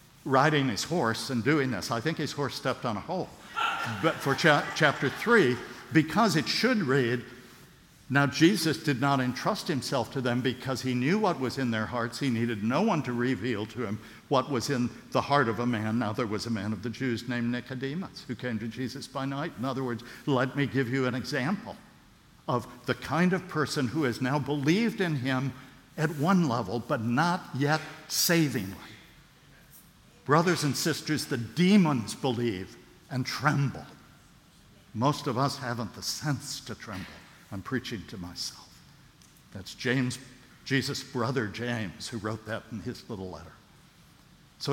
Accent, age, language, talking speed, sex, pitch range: American, 60-79, English, 175 wpm, male, 120-155 Hz